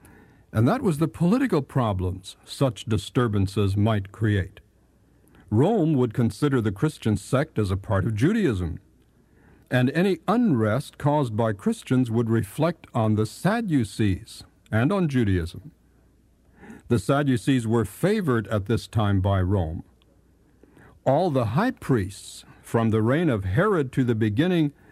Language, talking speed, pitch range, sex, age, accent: English, 135 wpm, 105-140 Hz, male, 60-79, American